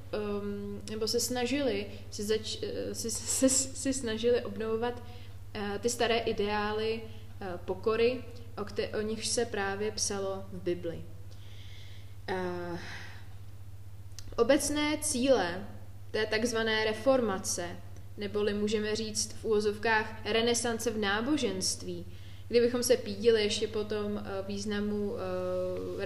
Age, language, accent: 20-39, Czech, native